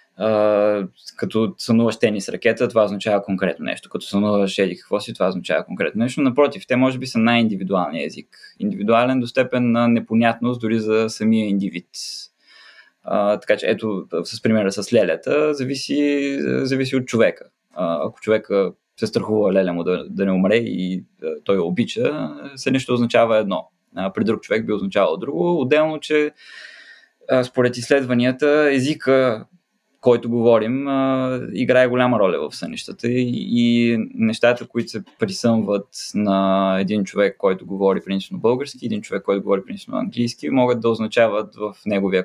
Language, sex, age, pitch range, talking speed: Bulgarian, male, 20-39, 110-135 Hz, 150 wpm